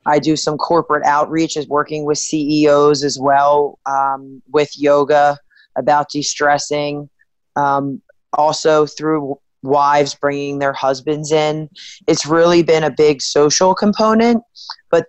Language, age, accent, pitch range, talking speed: English, 20-39, American, 145-165 Hz, 125 wpm